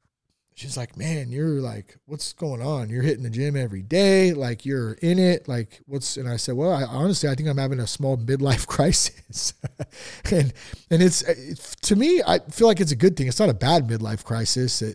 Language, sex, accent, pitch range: English, male, American, 135-215 Hz